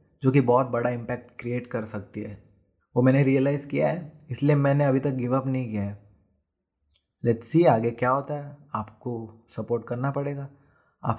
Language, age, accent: Hindi, 20-39, native